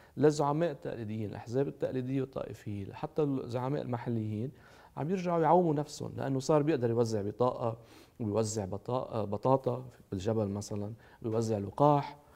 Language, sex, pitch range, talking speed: Arabic, male, 110-150 Hz, 110 wpm